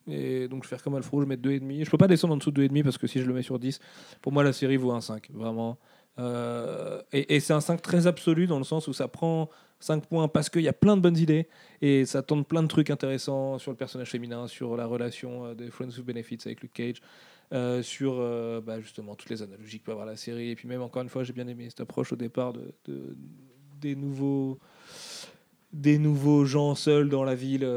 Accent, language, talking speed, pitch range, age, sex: French, French, 255 wpm, 125-145 Hz, 30-49, male